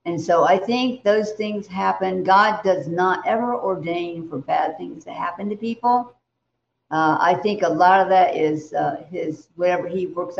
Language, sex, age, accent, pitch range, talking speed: English, female, 60-79, American, 175-220 Hz, 185 wpm